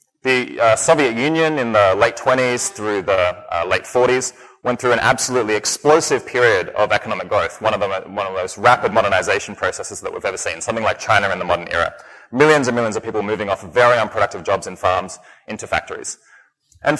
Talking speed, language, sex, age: 205 wpm, English, male, 20-39